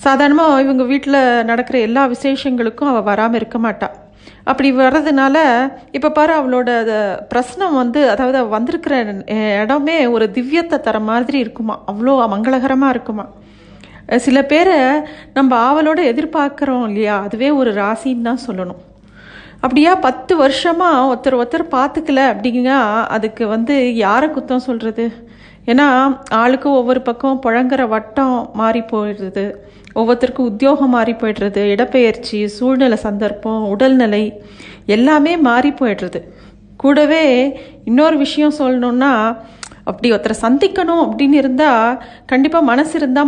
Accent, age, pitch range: native, 40-59, 230-280 Hz